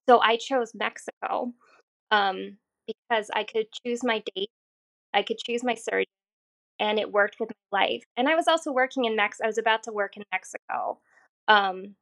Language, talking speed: English, 185 wpm